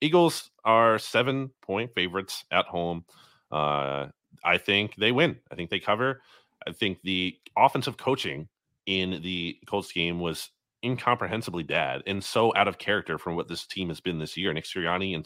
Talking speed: 170 wpm